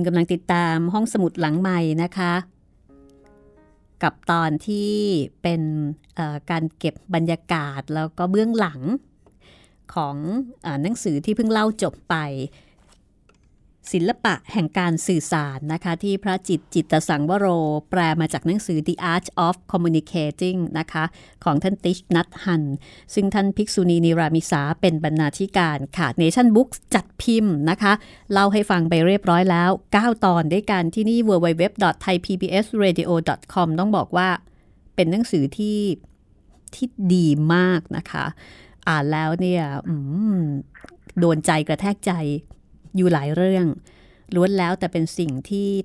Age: 30-49